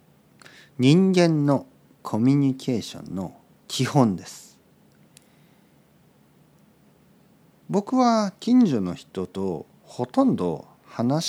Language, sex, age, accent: Japanese, male, 50-69, native